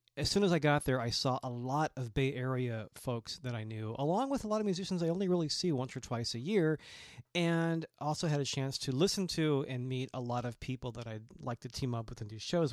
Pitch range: 115-140 Hz